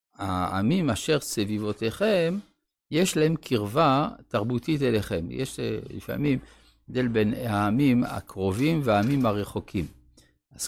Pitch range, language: 105-145 Hz, Hebrew